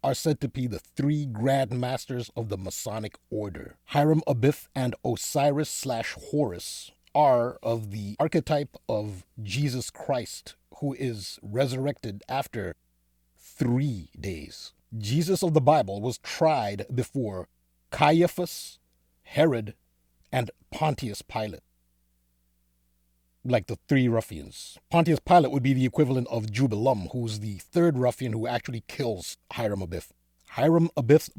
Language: English